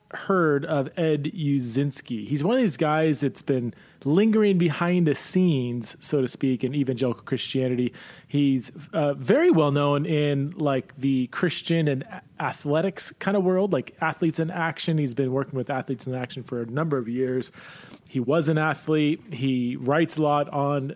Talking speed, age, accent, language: 170 wpm, 30-49, American, English